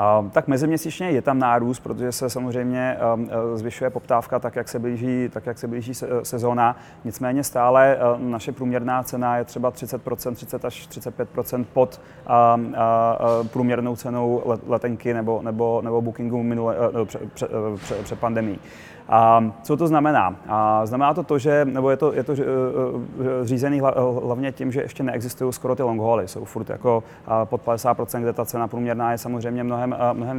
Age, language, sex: 30-49, Czech, male